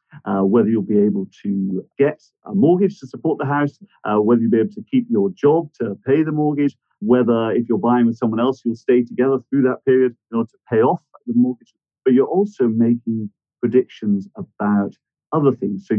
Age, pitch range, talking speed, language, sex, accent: 50-69, 110-170 Hz, 205 wpm, English, male, British